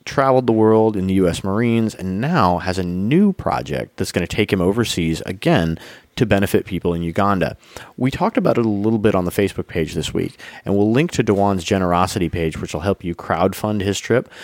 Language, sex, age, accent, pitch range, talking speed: English, male, 30-49, American, 90-115 Hz, 215 wpm